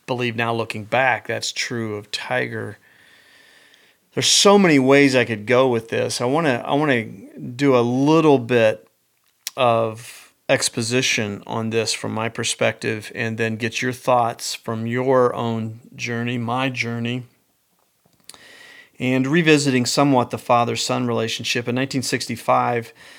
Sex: male